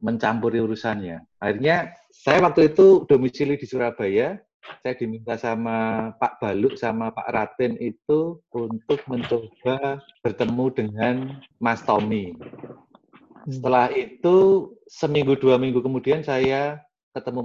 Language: Indonesian